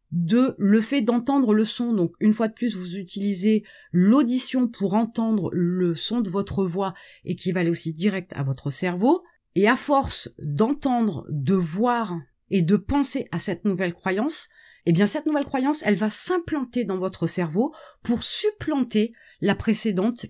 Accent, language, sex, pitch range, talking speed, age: French, French, female, 185-250 Hz, 170 wpm, 30-49